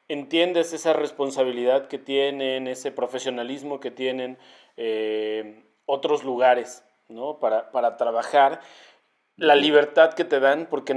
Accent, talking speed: Mexican, 120 wpm